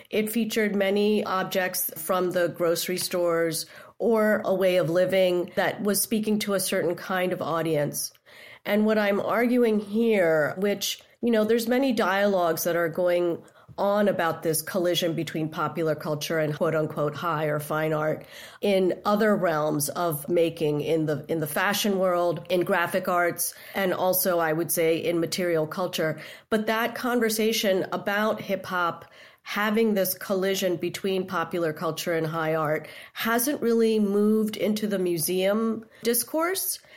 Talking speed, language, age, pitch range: 150 wpm, English, 40-59, 170-210 Hz